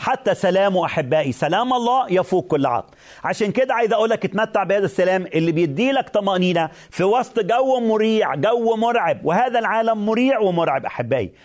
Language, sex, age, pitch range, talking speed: Arabic, male, 40-59, 155-215 Hz, 155 wpm